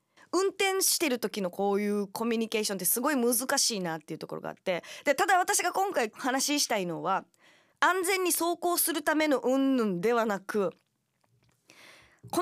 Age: 20-39